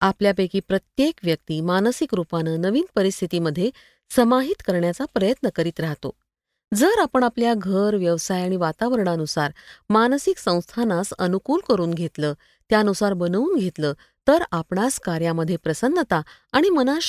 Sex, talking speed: female, 115 wpm